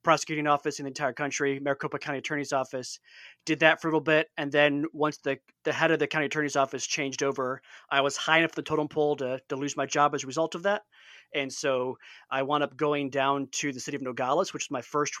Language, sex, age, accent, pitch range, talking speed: English, male, 20-39, American, 135-155 Hz, 245 wpm